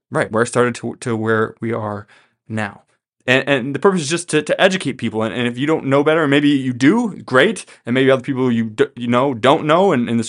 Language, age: English, 20-39